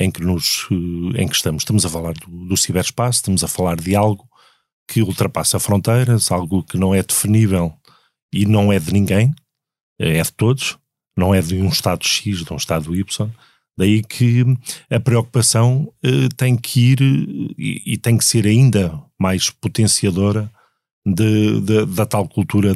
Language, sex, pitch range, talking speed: Portuguese, male, 95-120 Hz, 170 wpm